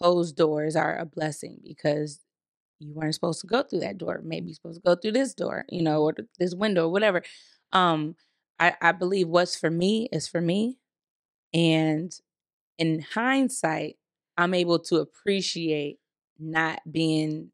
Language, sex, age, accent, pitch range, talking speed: English, female, 20-39, American, 155-175 Hz, 160 wpm